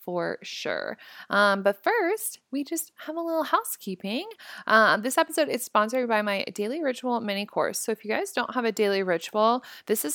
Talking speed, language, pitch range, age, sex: 195 wpm, English, 190-245 Hz, 20-39, female